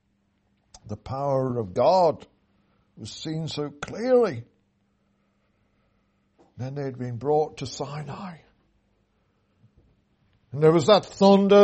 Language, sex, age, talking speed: English, male, 60-79, 110 wpm